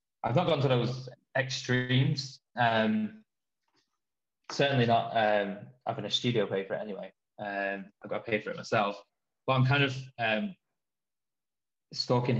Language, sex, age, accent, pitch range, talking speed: English, male, 20-39, British, 105-140 Hz, 140 wpm